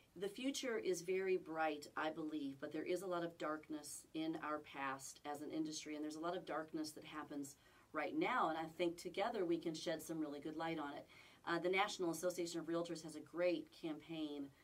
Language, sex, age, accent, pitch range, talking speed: English, female, 40-59, American, 150-180 Hz, 215 wpm